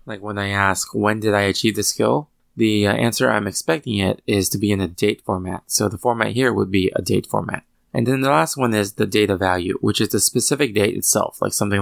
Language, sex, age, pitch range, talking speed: English, male, 20-39, 100-120 Hz, 250 wpm